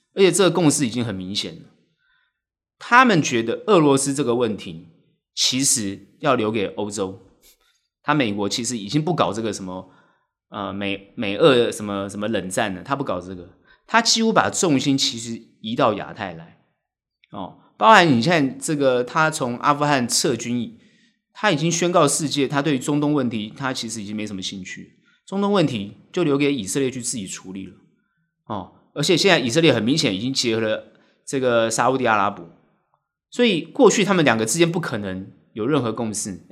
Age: 30-49